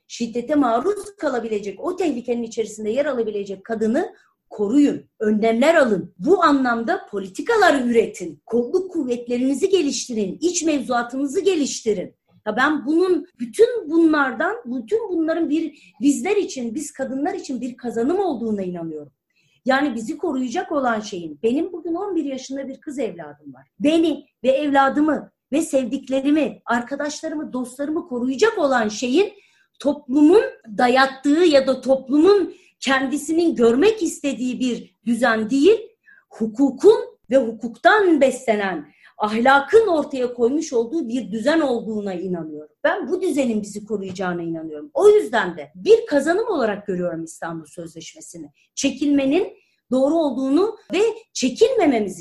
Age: 40-59